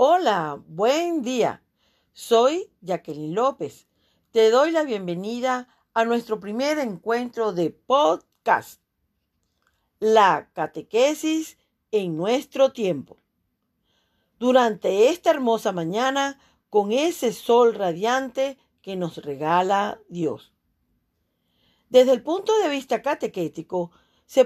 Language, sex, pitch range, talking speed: Spanish, female, 200-280 Hz, 100 wpm